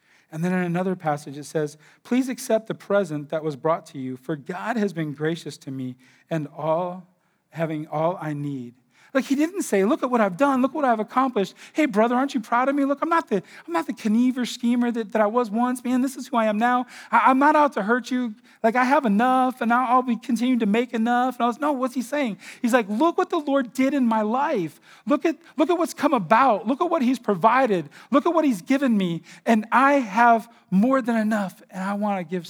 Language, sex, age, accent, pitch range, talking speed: English, male, 40-59, American, 180-255 Hz, 250 wpm